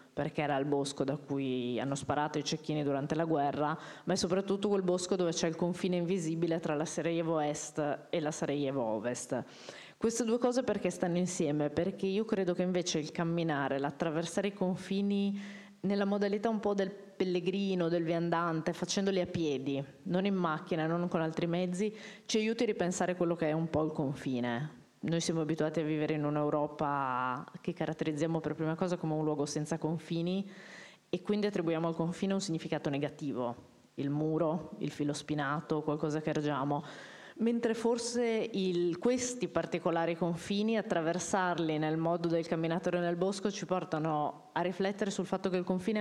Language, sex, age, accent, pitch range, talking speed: Italian, female, 20-39, native, 155-190 Hz, 170 wpm